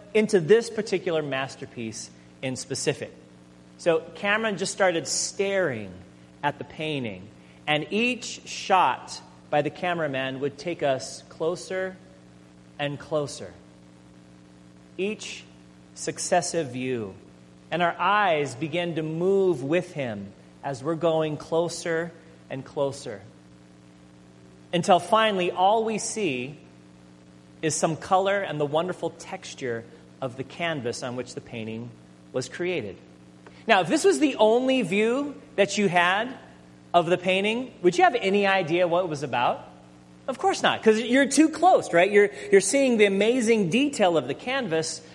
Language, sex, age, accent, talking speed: English, male, 30-49, American, 135 wpm